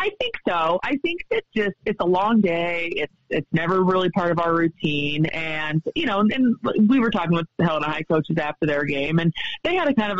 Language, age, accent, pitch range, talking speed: English, 30-49, American, 155-200 Hz, 235 wpm